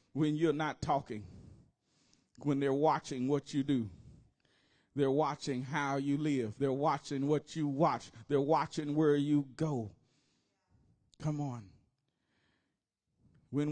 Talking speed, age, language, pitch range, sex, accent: 120 wpm, 40-59, English, 145-185 Hz, male, American